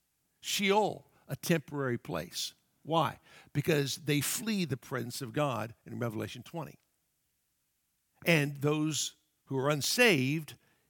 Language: English